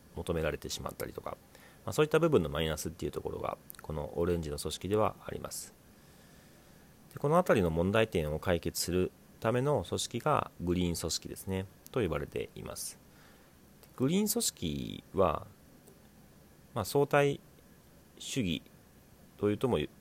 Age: 40-59